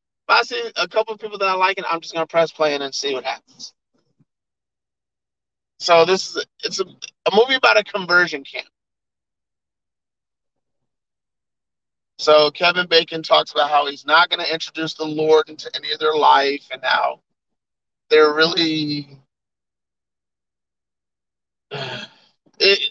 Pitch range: 140-185 Hz